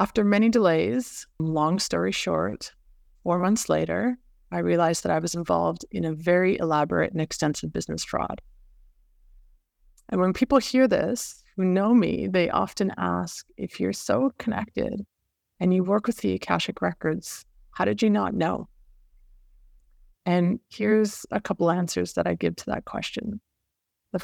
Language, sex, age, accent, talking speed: English, female, 30-49, American, 155 wpm